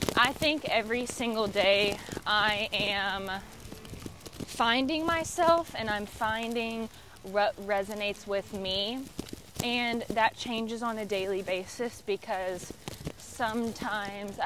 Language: English